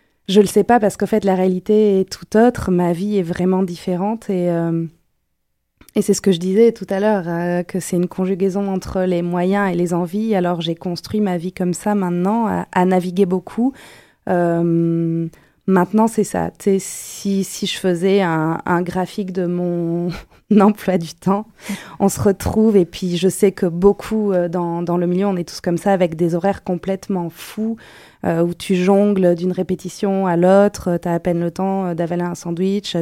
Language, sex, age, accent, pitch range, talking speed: French, female, 20-39, French, 175-200 Hz, 195 wpm